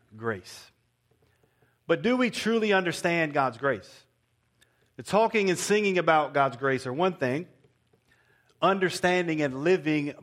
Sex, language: male, English